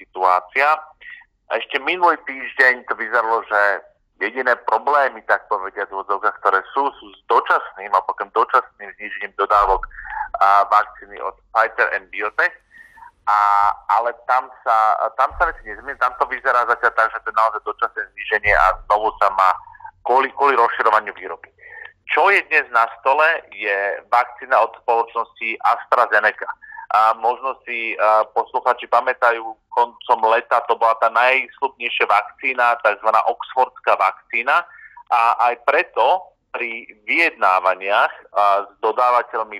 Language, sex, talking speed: Slovak, male, 125 wpm